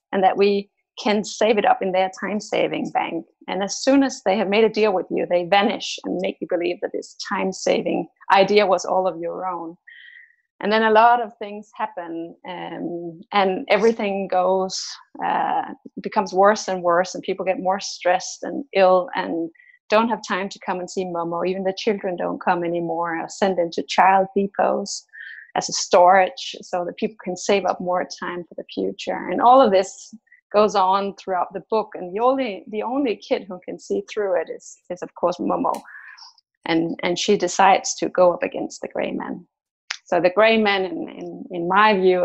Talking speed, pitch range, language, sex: 195 wpm, 185-220 Hz, English, female